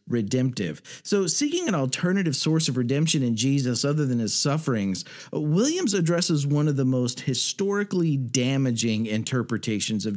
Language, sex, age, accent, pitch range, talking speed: English, male, 50-69, American, 115-165 Hz, 140 wpm